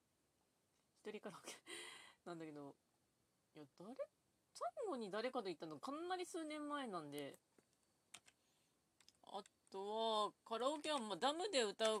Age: 40-59